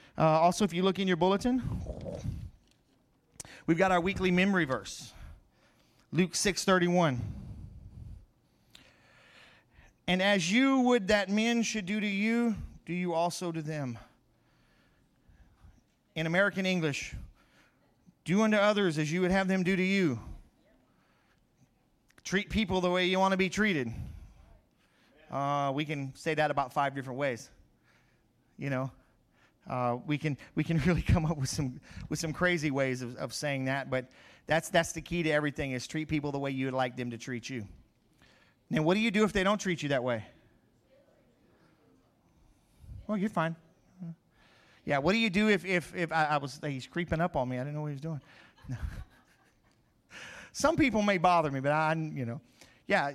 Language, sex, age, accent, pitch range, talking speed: English, male, 30-49, American, 130-185 Hz, 170 wpm